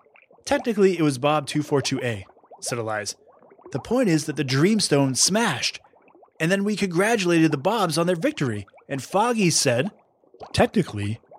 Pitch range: 130-180 Hz